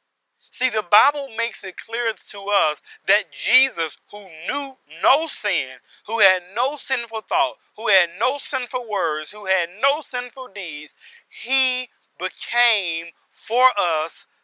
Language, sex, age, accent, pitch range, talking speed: English, male, 40-59, American, 200-250 Hz, 135 wpm